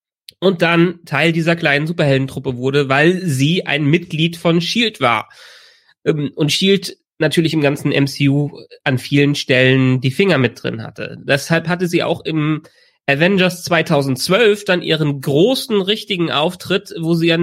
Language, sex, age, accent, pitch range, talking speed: German, male, 30-49, German, 140-175 Hz, 150 wpm